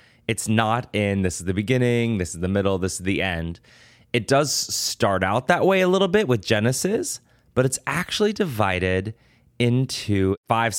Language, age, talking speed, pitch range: English, 20-39, 180 wpm, 95-125 Hz